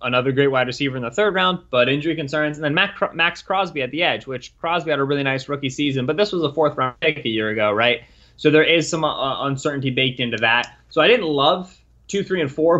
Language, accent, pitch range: English, American, 120-145 Hz